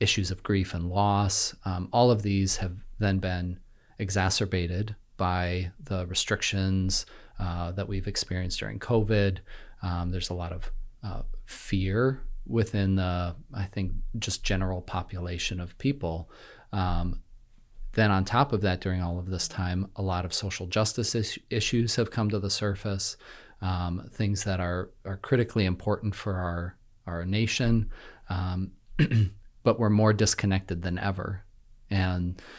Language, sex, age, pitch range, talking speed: English, male, 30-49, 90-110 Hz, 145 wpm